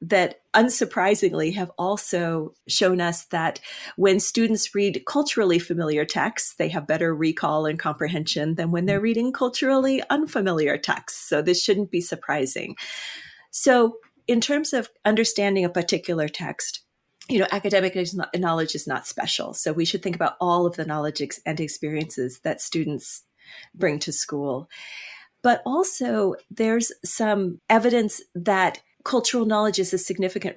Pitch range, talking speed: 165-220 Hz, 145 wpm